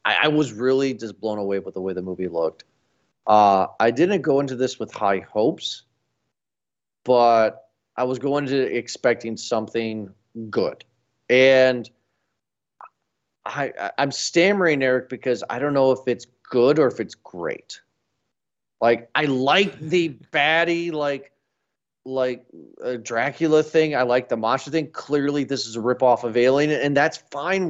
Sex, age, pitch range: male, 40-59, 120-160 Hz